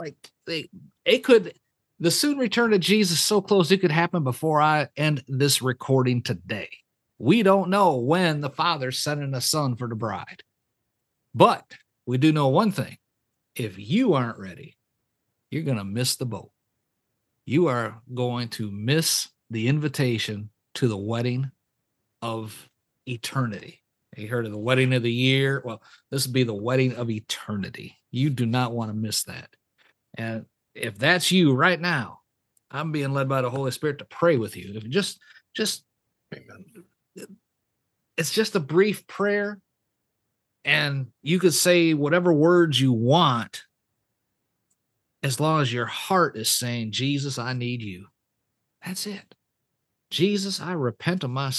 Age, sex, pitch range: 50-69, male, 115-165 Hz